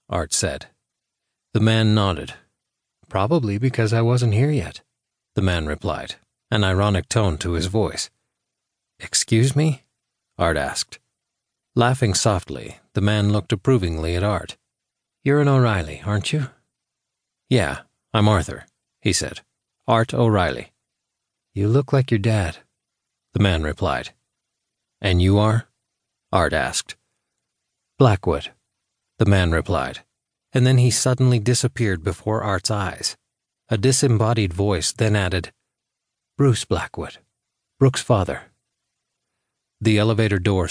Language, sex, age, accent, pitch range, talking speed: English, male, 40-59, American, 95-120 Hz, 120 wpm